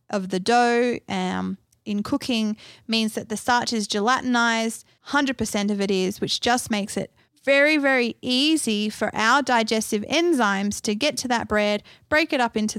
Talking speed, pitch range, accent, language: 170 wpm, 205-265 Hz, Australian, English